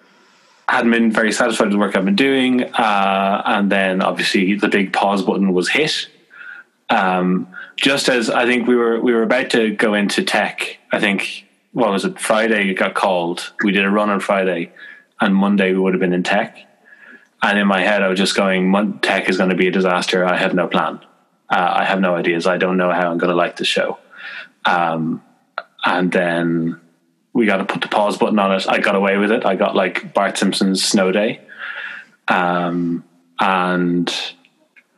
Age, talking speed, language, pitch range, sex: 20-39, 200 wpm, English, 95-110 Hz, male